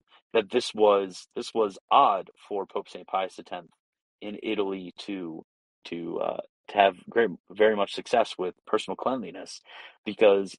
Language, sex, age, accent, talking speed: English, male, 30-49, American, 155 wpm